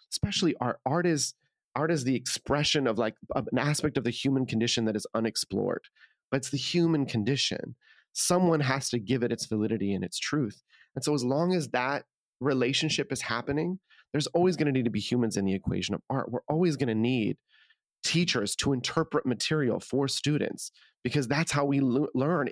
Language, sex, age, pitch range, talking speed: English, male, 30-49, 115-150 Hz, 195 wpm